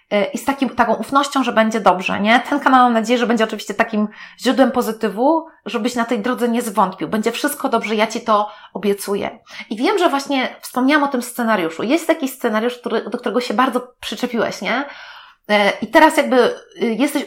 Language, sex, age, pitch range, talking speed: Polish, female, 30-49, 220-275 Hz, 180 wpm